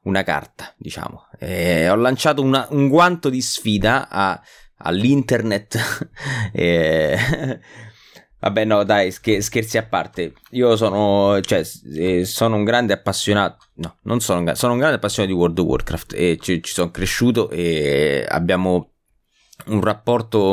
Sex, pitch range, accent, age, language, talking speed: male, 90-115 Hz, native, 20-39, Italian, 120 wpm